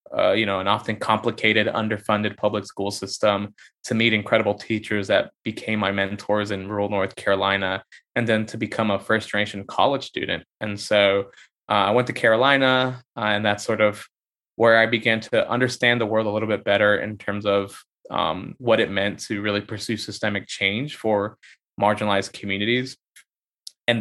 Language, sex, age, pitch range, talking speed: English, male, 20-39, 100-115 Hz, 170 wpm